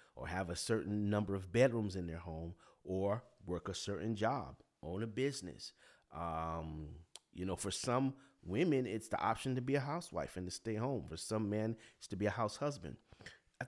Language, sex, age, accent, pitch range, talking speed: English, male, 30-49, American, 95-125 Hz, 195 wpm